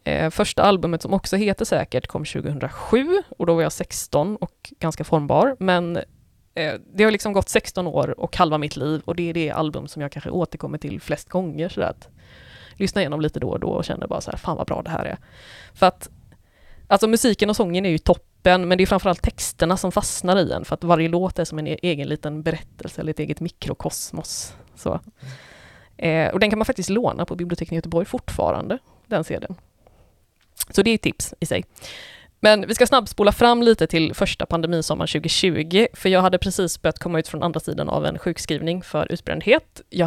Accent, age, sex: native, 20-39, female